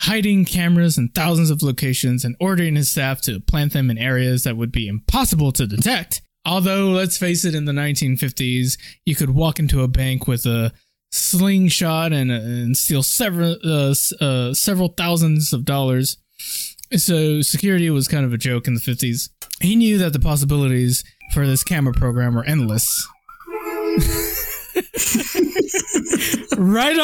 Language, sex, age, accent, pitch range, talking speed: English, male, 20-39, American, 125-185 Hz, 150 wpm